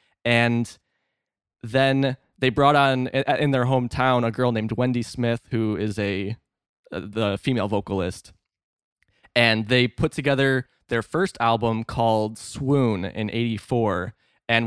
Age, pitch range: 20-39, 110-135 Hz